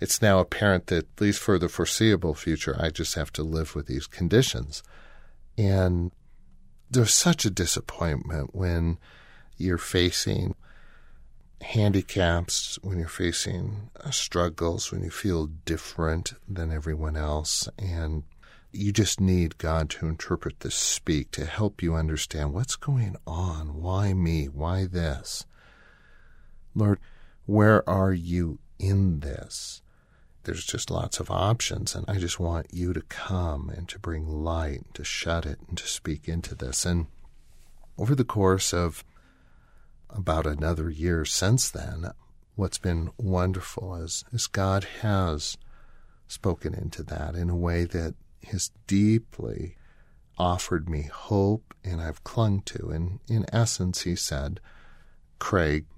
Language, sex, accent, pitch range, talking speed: English, male, American, 80-100 Hz, 135 wpm